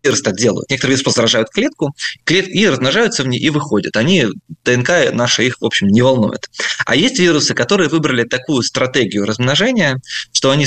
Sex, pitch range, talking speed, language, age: male, 115-155 Hz, 175 wpm, Russian, 20-39